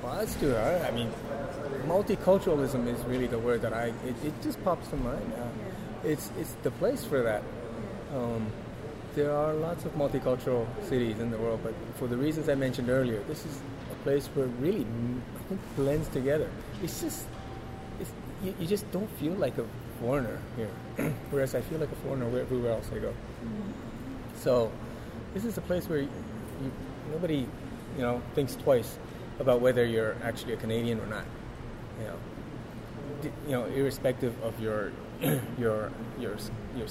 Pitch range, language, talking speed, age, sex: 115-135 Hz, English, 165 wpm, 30-49, male